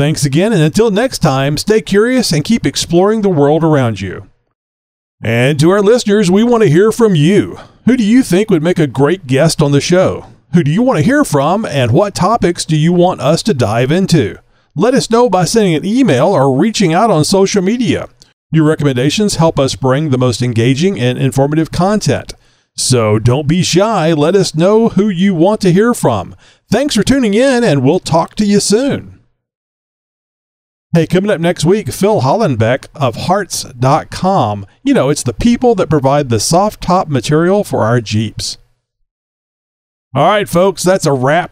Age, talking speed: 40-59, 190 wpm